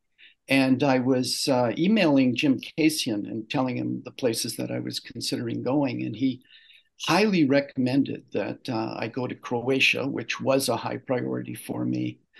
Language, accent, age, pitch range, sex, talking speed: English, American, 50-69, 125-150 Hz, male, 165 wpm